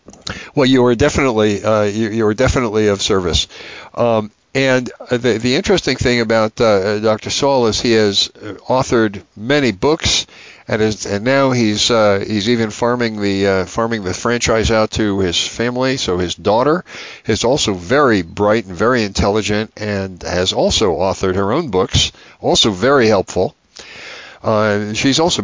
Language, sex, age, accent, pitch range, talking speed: English, male, 60-79, American, 95-120 Hz, 160 wpm